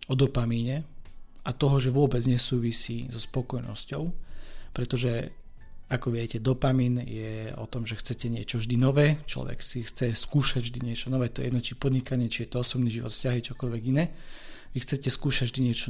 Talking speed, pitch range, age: 175 wpm, 115-135 Hz, 40-59